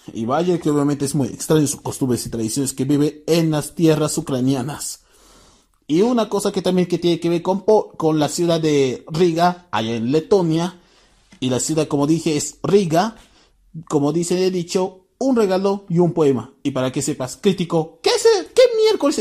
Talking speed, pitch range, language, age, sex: 185 wpm, 160-255 Hz, Spanish, 30-49, male